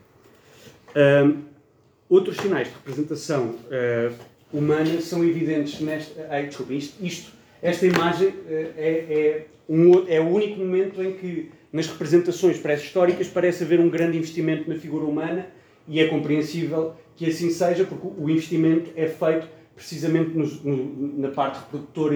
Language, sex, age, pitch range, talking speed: Portuguese, male, 30-49, 135-170 Hz, 145 wpm